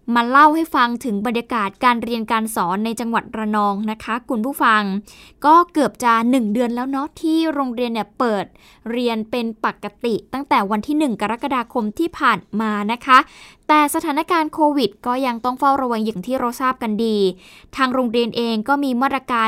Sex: female